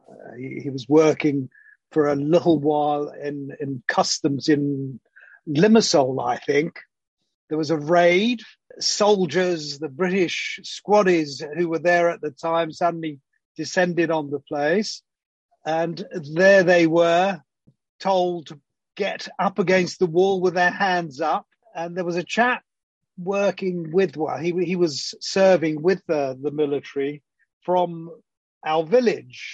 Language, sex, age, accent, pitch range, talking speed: English, male, 50-69, British, 155-190 Hz, 140 wpm